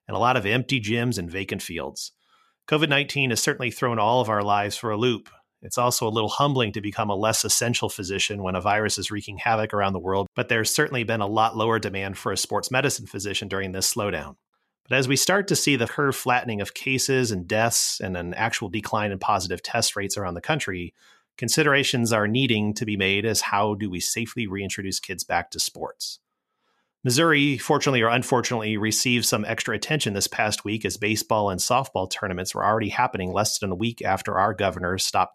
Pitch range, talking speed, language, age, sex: 100-125 Hz, 210 wpm, English, 30-49, male